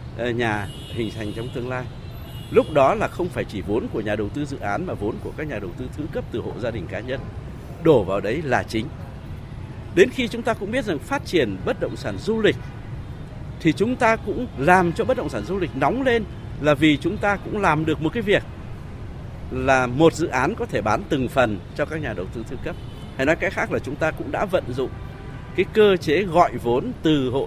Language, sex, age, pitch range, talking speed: Vietnamese, male, 60-79, 120-175 Hz, 240 wpm